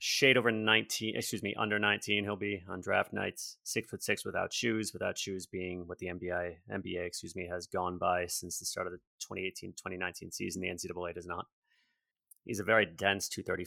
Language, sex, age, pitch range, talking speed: English, male, 30-49, 90-110 Hz, 215 wpm